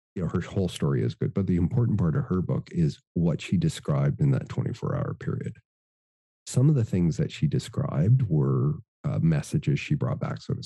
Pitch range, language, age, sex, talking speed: 90-150 Hz, English, 40-59, male, 210 wpm